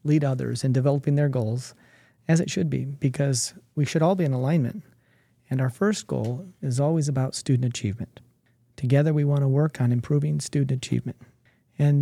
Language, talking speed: English, 180 wpm